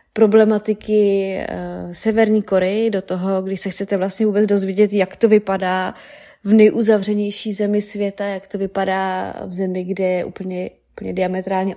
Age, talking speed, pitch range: 20-39, 150 wpm, 190-215 Hz